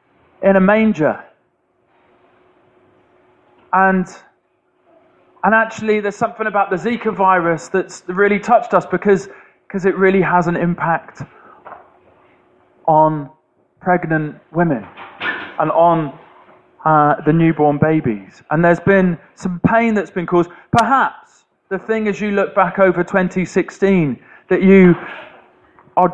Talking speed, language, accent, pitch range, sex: 120 wpm, English, British, 160-195 Hz, male